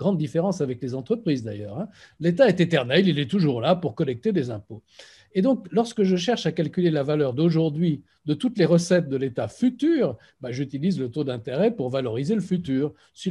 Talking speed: 200 wpm